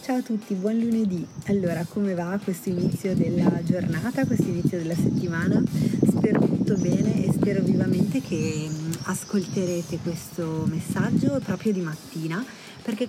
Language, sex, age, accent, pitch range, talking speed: Italian, female, 30-49, native, 160-195 Hz, 140 wpm